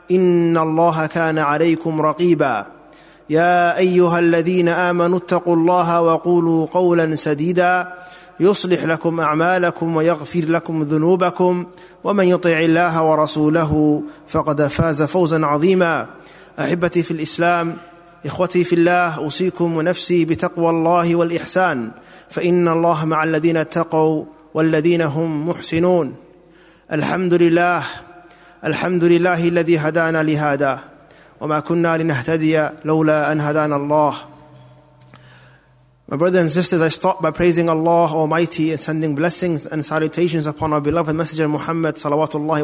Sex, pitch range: male, 155-175 Hz